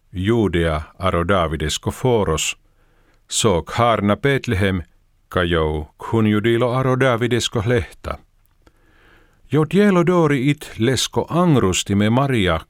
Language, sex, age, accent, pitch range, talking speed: Finnish, male, 50-69, native, 90-120 Hz, 85 wpm